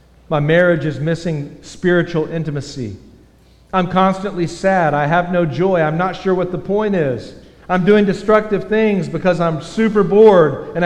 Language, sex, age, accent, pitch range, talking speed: English, male, 50-69, American, 115-175 Hz, 160 wpm